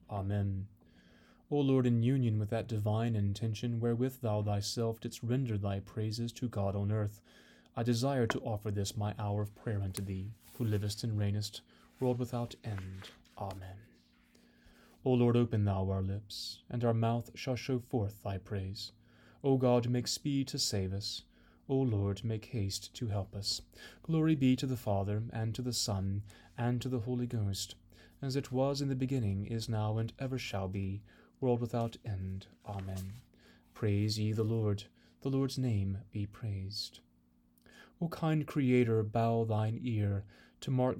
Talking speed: 165 wpm